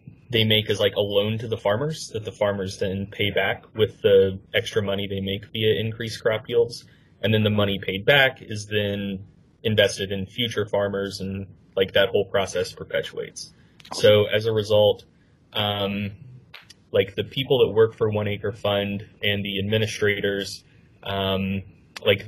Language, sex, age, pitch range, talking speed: English, male, 20-39, 100-125 Hz, 165 wpm